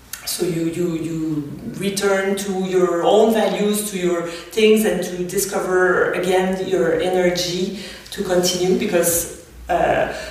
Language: German